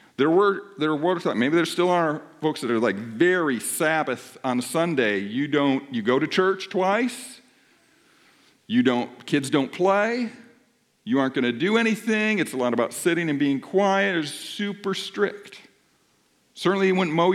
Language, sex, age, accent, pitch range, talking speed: English, male, 50-69, American, 155-230 Hz, 170 wpm